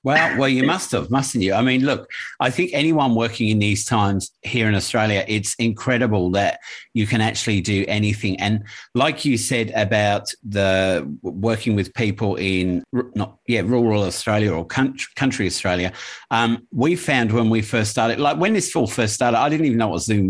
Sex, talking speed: male, 190 wpm